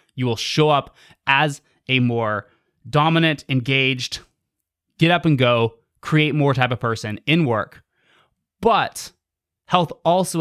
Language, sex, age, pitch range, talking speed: English, male, 20-39, 120-160 Hz, 135 wpm